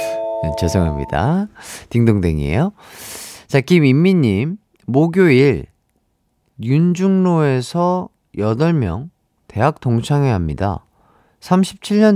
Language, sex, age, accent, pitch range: Korean, male, 30-49, native, 110-165 Hz